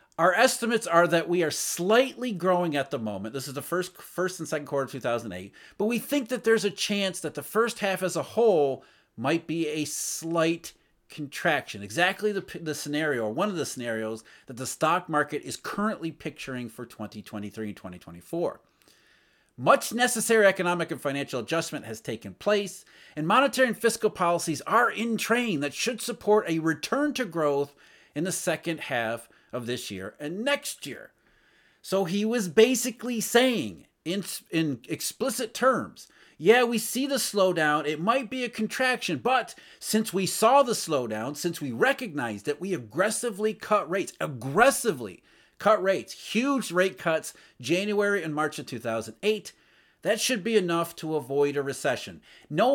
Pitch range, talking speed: 145-220 Hz, 165 wpm